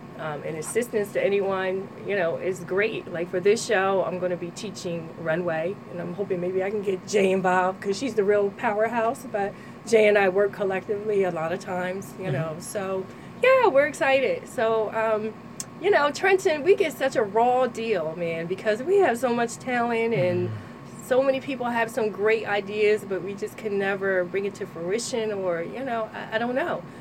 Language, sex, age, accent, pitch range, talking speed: English, female, 20-39, American, 185-235 Hz, 200 wpm